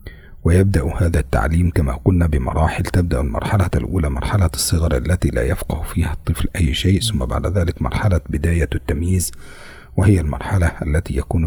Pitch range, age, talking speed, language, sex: 75-90 Hz, 40-59, 145 wpm, Indonesian, male